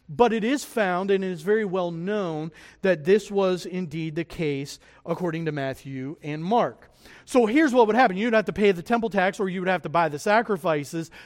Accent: American